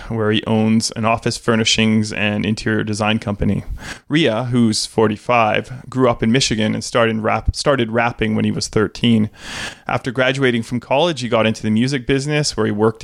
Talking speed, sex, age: 180 wpm, male, 20-39